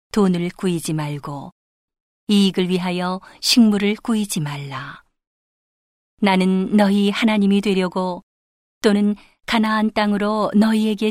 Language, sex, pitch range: Korean, female, 175-210 Hz